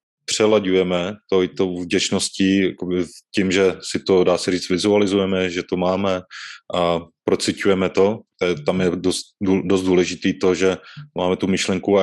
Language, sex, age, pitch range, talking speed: Czech, male, 20-39, 90-95 Hz, 150 wpm